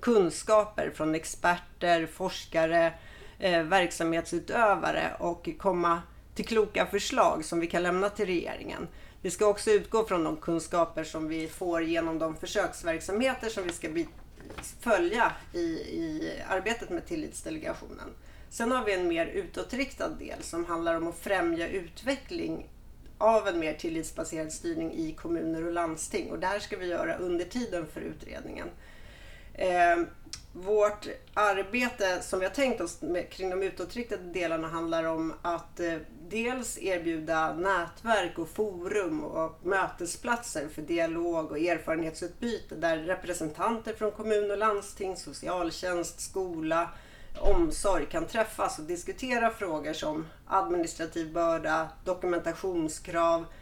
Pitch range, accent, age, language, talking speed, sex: 165-215 Hz, native, 30-49, Swedish, 130 wpm, female